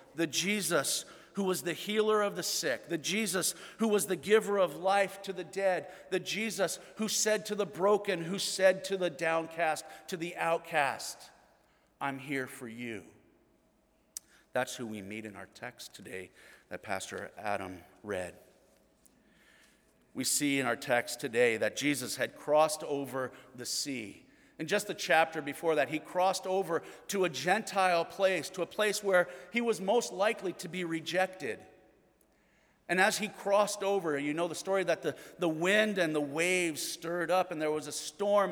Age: 50-69